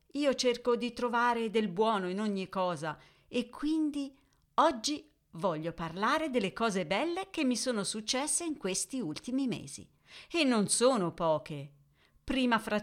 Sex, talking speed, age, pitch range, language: female, 145 wpm, 40-59, 170-245 Hz, Italian